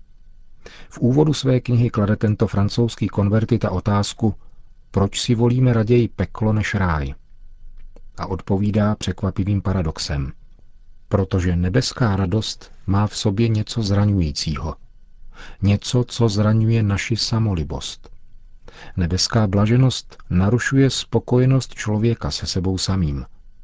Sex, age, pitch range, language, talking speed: male, 40-59, 90-110 Hz, Czech, 105 wpm